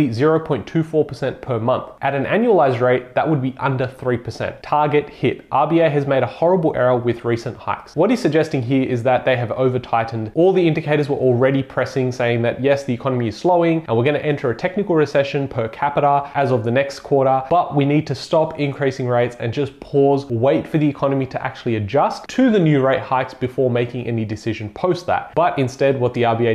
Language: English